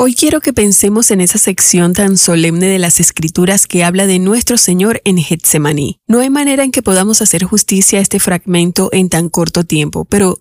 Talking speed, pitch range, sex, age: 200 wpm, 175-220 Hz, female, 30-49